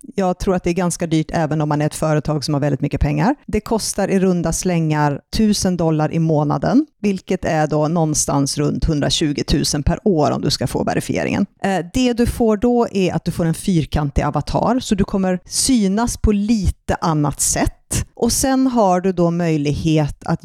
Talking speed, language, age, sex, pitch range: 195 wpm, Swedish, 30-49, female, 155-220 Hz